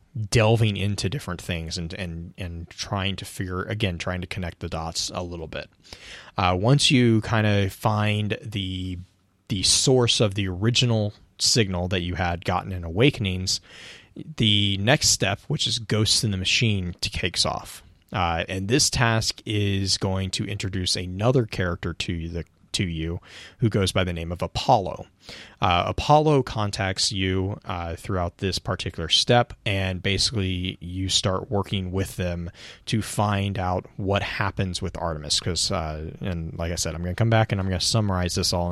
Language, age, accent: English, 20-39, American